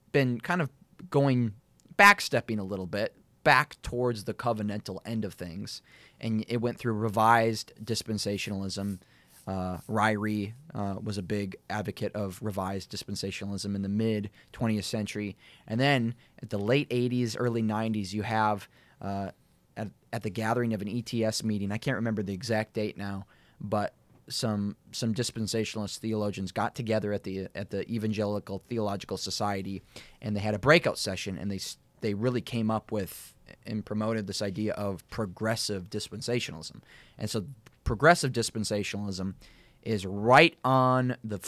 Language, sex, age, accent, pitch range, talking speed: English, male, 20-39, American, 100-120 Hz, 150 wpm